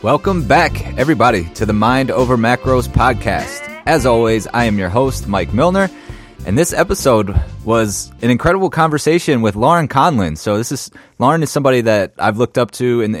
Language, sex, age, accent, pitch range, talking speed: English, male, 20-39, American, 95-125 Hz, 180 wpm